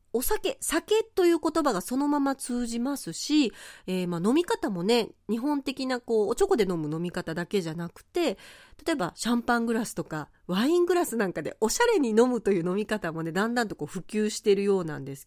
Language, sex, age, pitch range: Japanese, female, 40-59, 190-310 Hz